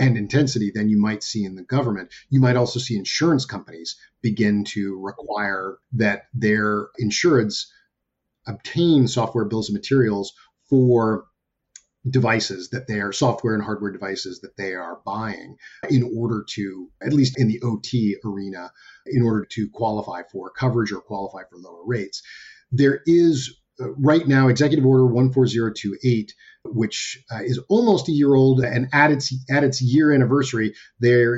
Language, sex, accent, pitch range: English, male, American, 105-130 Hz